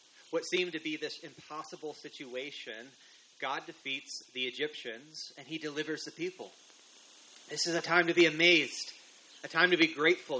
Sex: male